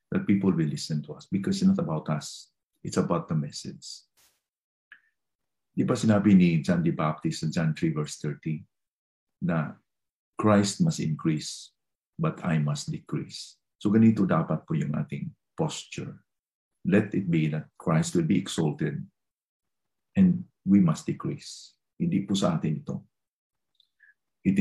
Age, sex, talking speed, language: 50-69, male, 140 wpm, English